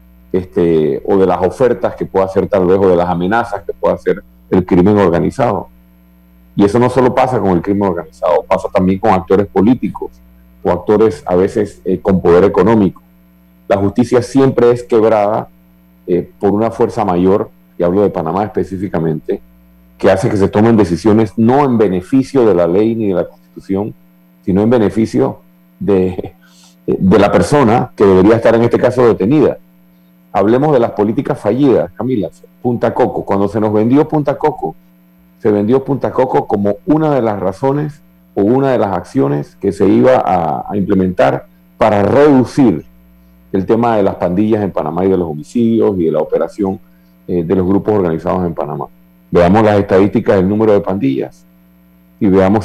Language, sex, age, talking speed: Spanish, male, 40-59, 175 wpm